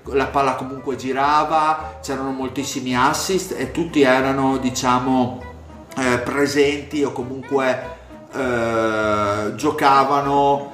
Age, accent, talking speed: 30-49, native, 95 wpm